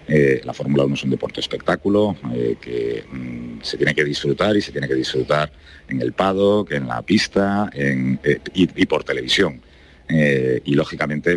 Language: Spanish